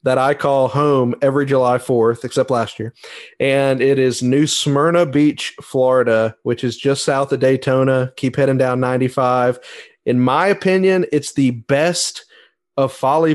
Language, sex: English, male